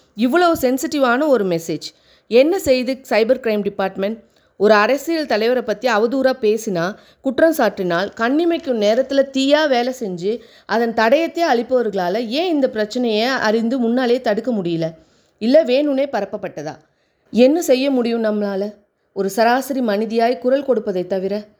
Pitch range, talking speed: 205-265 Hz, 120 wpm